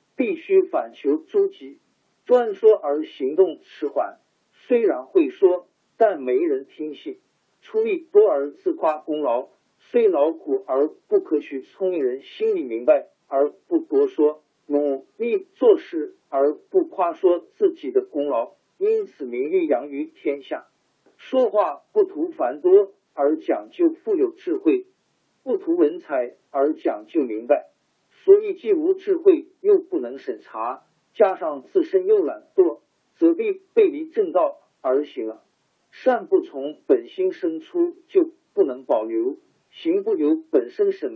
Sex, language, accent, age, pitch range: male, Chinese, native, 50-69, 320-390 Hz